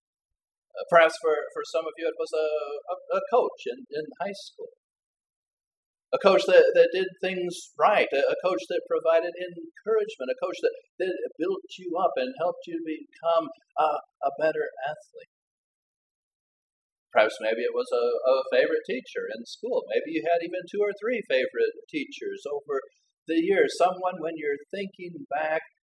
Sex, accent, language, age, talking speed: male, American, English, 50-69, 165 wpm